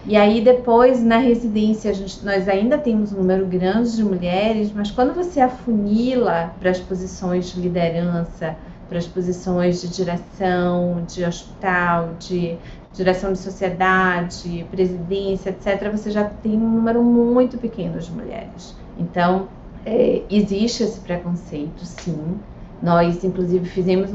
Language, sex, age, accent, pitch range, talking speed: Portuguese, female, 30-49, Brazilian, 175-210 Hz, 130 wpm